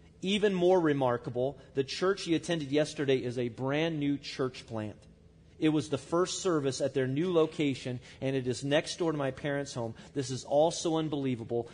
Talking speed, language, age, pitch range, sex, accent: 190 wpm, English, 40-59, 115-140 Hz, male, American